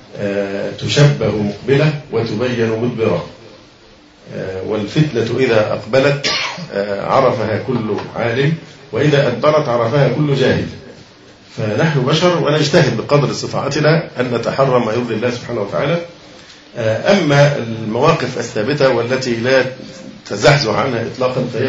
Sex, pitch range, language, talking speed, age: male, 115-140 Hz, Arabic, 100 wpm, 50-69